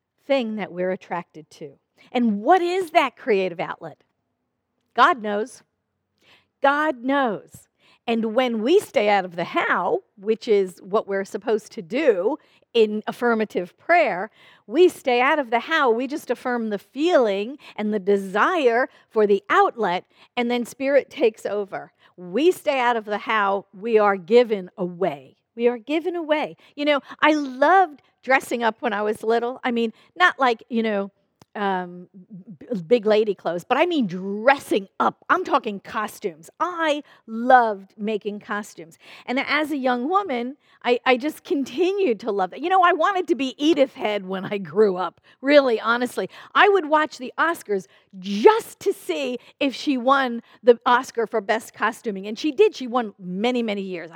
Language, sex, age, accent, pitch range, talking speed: English, female, 50-69, American, 210-290 Hz, 165 wpm